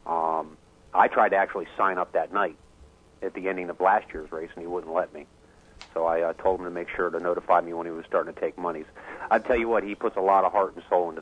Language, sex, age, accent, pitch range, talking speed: English, male, 40-59, American, 85-95 Hz, 280 wpm